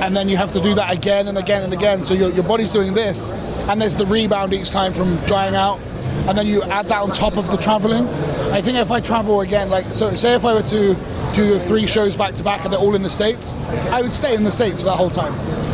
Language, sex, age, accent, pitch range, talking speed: Czech, male, 20-39, British, 185-215 Hz, 275 wpm